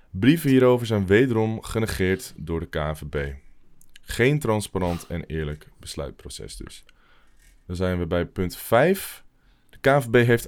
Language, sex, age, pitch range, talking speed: Dutch, male, 20-39, 80-110 Hz, 130 wpm